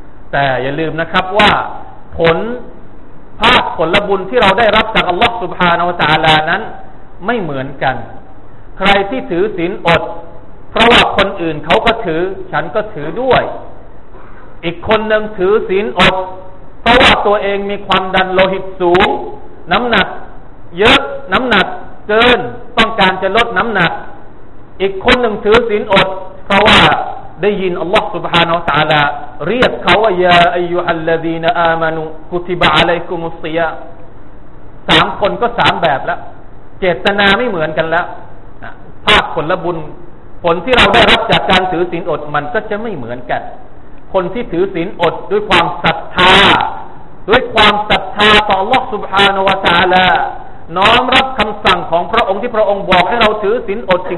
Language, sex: Thai, male